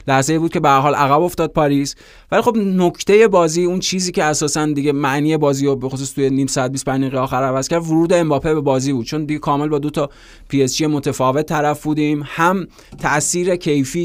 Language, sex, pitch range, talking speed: Persian, male, 135-160 Hz, 210 wpm